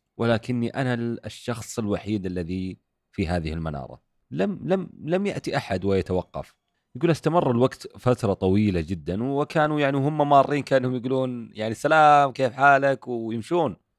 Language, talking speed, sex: Arabic, 135 wpm, male